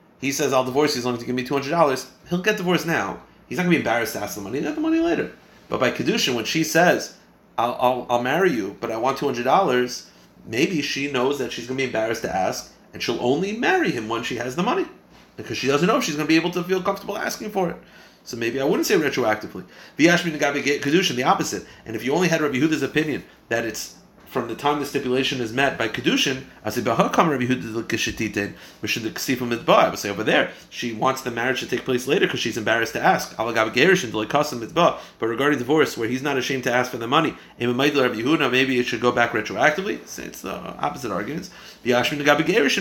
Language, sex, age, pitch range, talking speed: English, male, 30-49, 125-165 Hz, 225 wpm